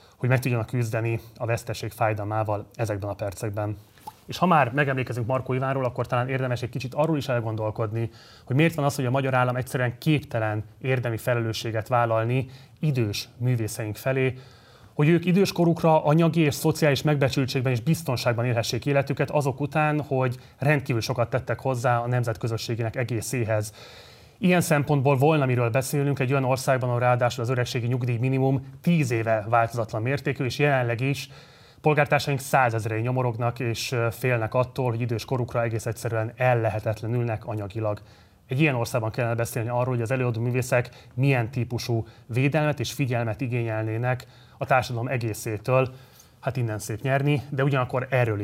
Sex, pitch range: male, 115-135 Hz